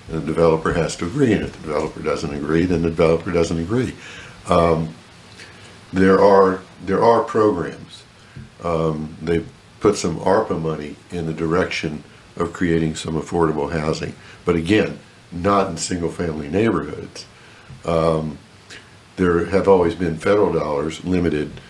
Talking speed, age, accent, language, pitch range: 140 wpm, 60-79, American, English, 80-95 Hz